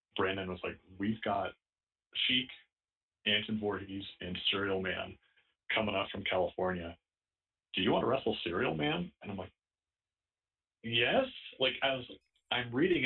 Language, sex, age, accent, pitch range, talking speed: English, male, 40-59, American, 95-110 Hz, 140 wpm